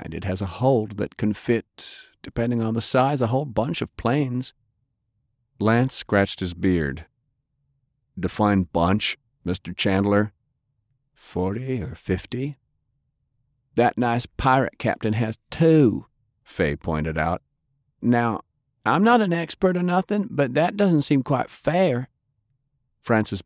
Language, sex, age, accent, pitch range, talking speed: English, male, 50-69, American, 95-135 Hz, 130 wpm